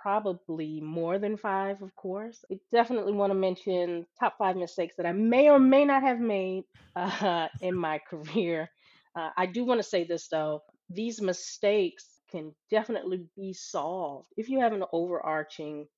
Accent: American